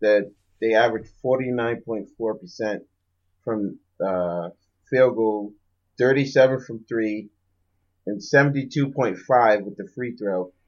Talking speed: 140 wpm